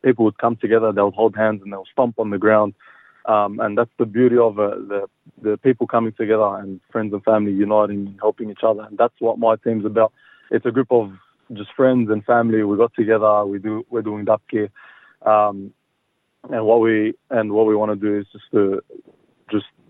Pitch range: 105-115 Hz